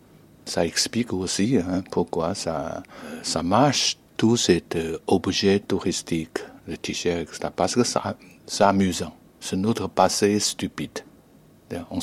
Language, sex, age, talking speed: French, male, 60-79, 120 wpm